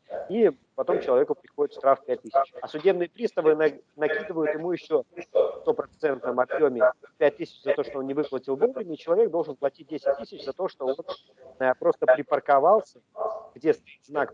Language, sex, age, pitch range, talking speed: Russian, male, 40-59, 130-210 Hz, 170 wpm